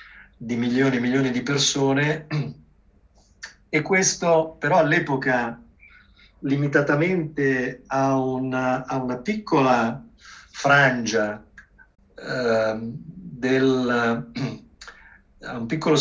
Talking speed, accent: 80 wpm, native